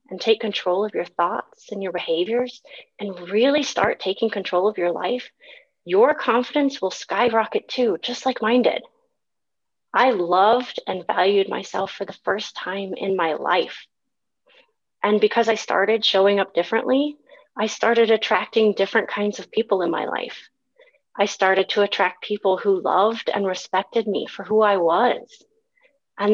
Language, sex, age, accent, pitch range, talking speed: English, female, 30-49, American, 190-240 Hz, 160 wpm